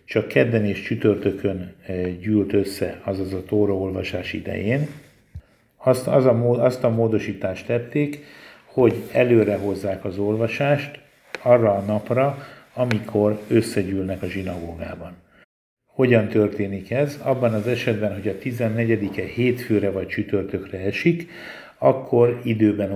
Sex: male